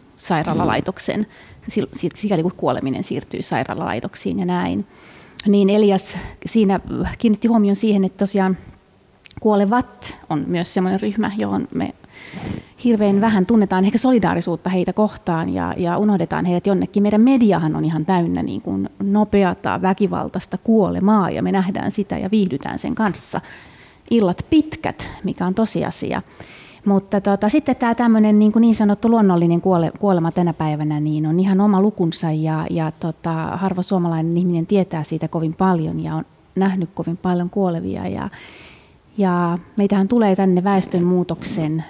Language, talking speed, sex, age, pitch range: Finnish, 135 wpm, female, 30-49, 170-210 Hz